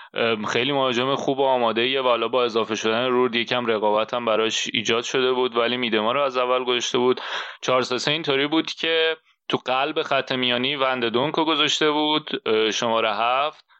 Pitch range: 120-140 Hz